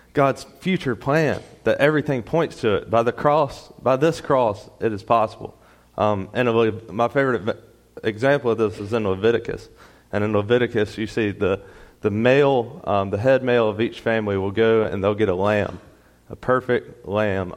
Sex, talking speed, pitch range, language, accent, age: male, 185 wpm, 100-120 Hz, English, American, 30-49